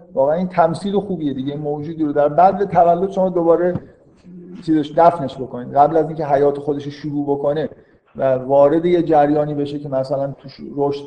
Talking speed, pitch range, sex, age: 175 wpm, 135-165 Hz, male, 50-69